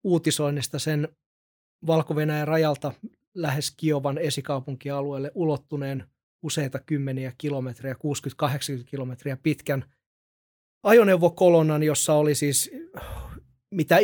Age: 30-49